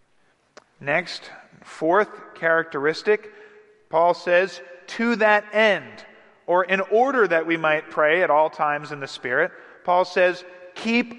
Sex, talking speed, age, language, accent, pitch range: male, 130 wpm, 40-59, English, American, 160-200 Hz